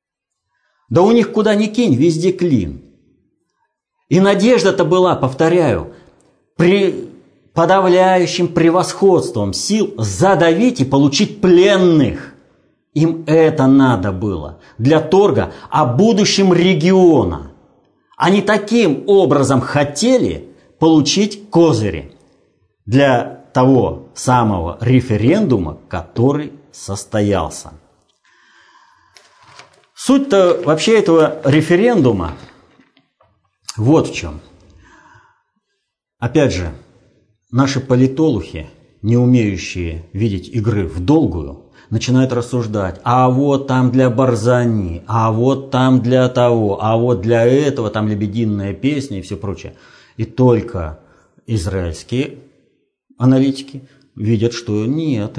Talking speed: 95 wpm